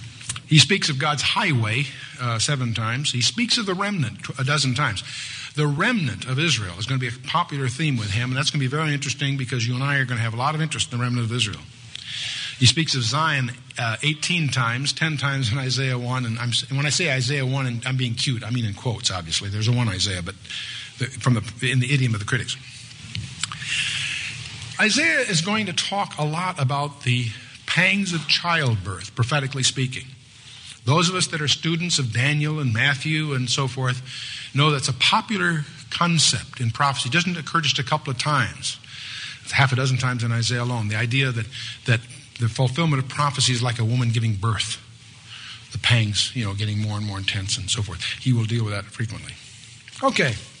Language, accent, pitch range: English, American, 120-145 Hz